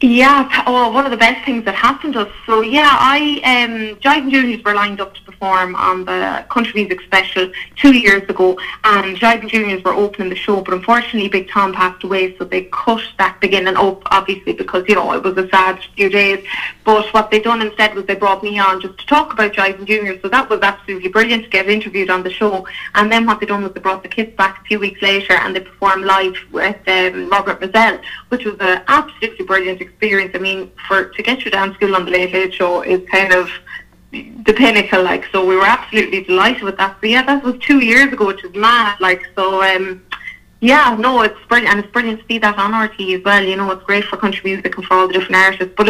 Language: English